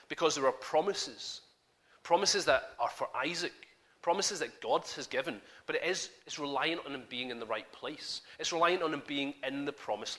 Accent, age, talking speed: British, 30-49, 190 wpm